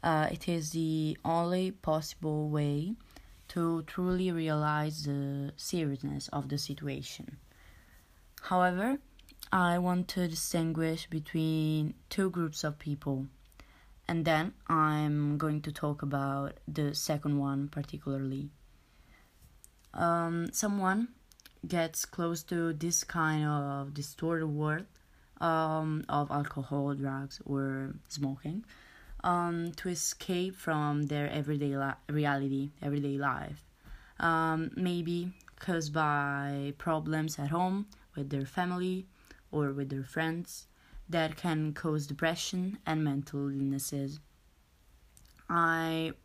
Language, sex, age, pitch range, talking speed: English, female, 20-39, 145-170 Hz, 110 wpm